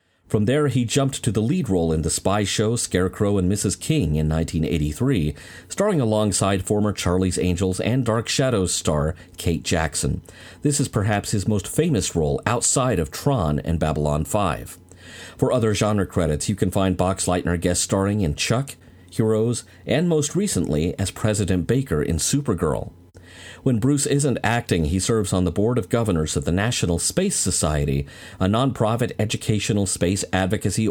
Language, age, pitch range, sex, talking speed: English, 40-59, 90-120 Hz, male, 165 wpm